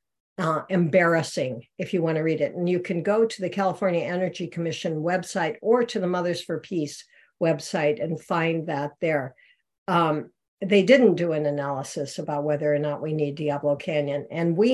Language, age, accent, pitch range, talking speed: English, 60-79, American, 165-215 Hz, 185 wpm